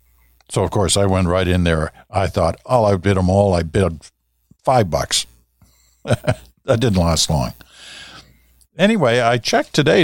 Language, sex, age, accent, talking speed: English, male, 60-79, American, 160 wpm